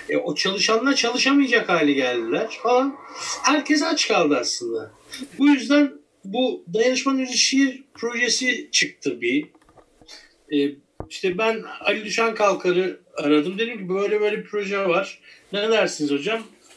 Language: Turkish